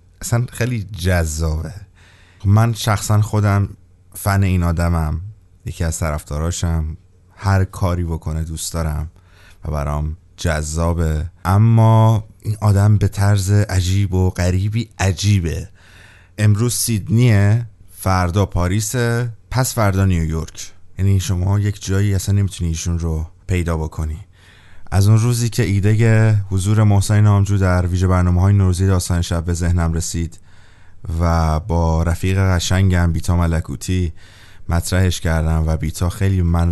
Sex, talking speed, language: male, 125 wpm, Persian